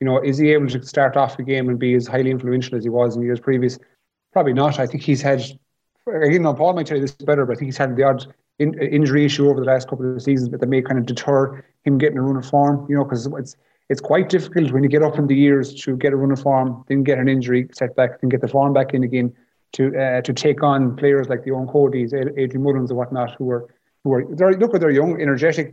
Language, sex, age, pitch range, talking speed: English, male, 30-49, 130-150 Hz, 280 wpm